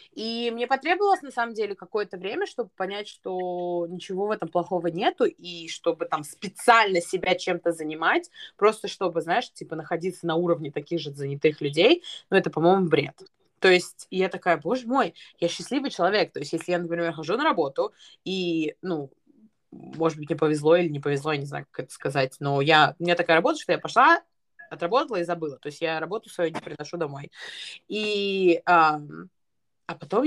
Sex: female